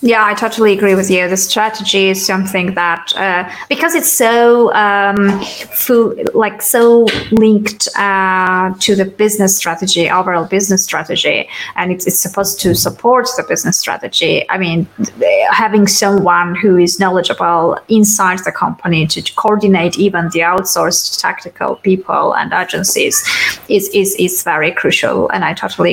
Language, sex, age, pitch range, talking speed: English, female, 20-39, 190-225 Hz, 150 wpm